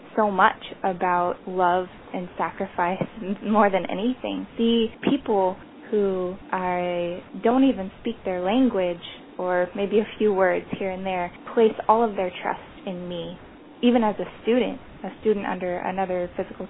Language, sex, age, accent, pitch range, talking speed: English, female, 10-29, American, 180-210 Hz, 150 wpm